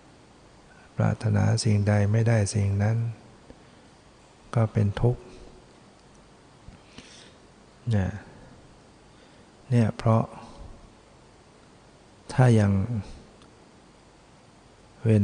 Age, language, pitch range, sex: 60-79, Thai, 100-115 Hz, male